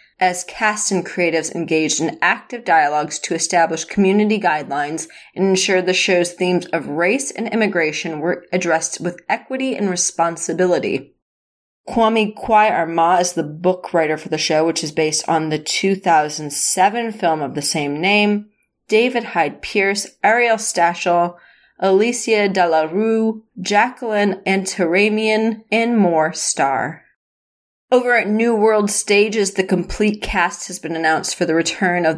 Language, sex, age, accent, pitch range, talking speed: English, female, 30-49, American, 165-215 Hz, 140 wpm